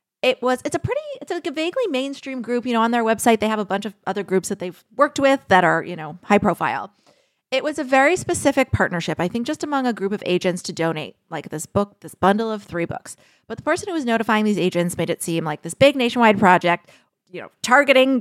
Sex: female